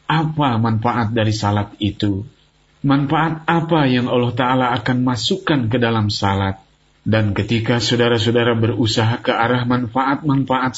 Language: Indonesian